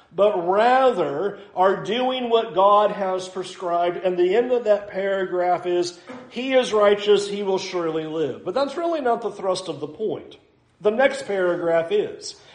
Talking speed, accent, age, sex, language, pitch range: 165 wpm, American, 50-69, male, English, 185-235 Hz